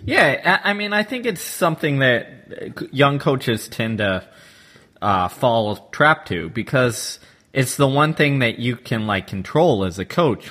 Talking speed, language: 165 wpm, English